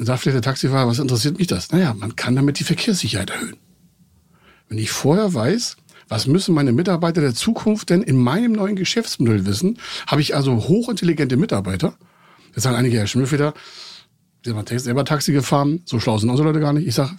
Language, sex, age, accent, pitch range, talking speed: German, male, 60-79, German, 120-180 Hz, 200 wpm